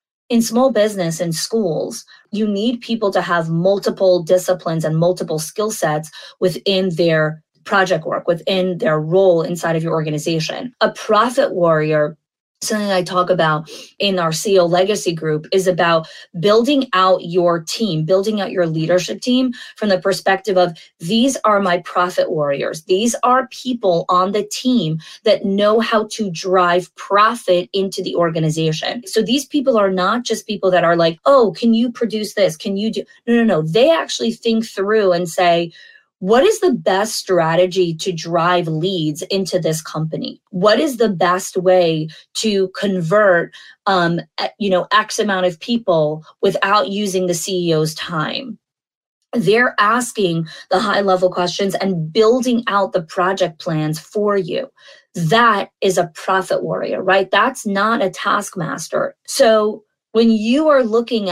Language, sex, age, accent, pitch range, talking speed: English, female, 20-39, American, 175-220 Hz, 155 wpm